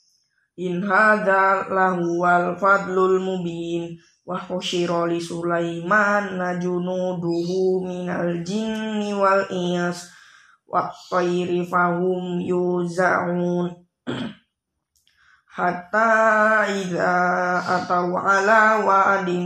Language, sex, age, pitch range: Indonesian, female, 20-39, 180-200 Hz